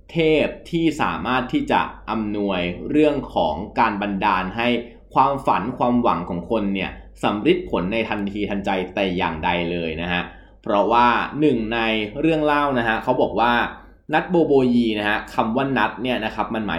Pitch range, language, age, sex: 100-135 Hz, Thai, 20-39, male